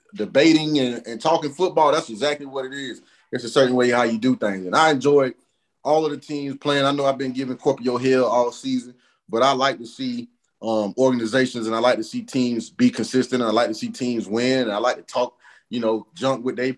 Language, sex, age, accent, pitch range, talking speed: English, male, 30-49, American, 120-145 Hz, 240 wpm